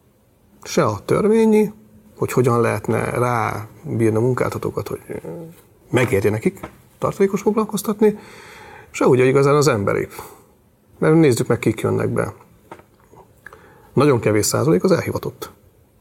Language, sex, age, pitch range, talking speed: Hungarian, male, 30-49, 105-140 Hz, 110 wpm